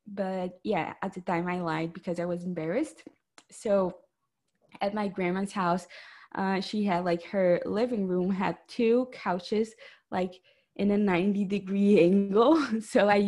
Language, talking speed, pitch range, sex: English, 155 wpm, 185-225 Hz, female